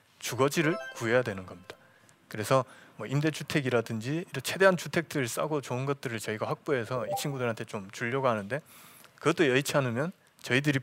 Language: Korean